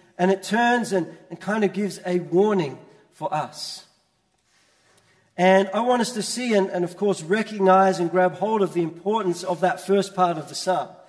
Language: English